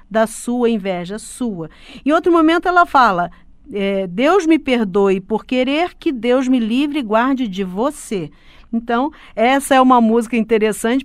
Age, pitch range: 50-69, 210-280 Hz